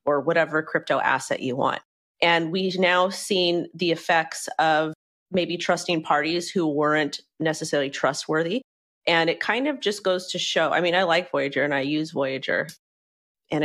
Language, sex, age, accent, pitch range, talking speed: English, female, 30-49, American, 150-180 Hz, 165 wpm